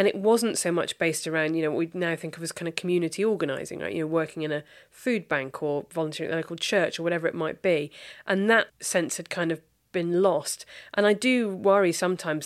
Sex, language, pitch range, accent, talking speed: female, English, 165-200 Hz, British, 245 wpm